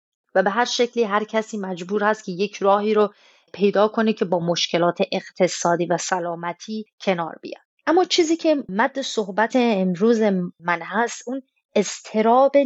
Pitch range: 175-235 Hz